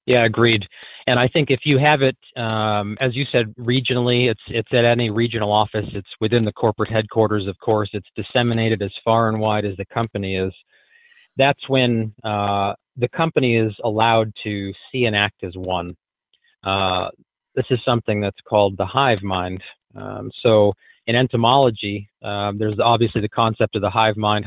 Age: 30-49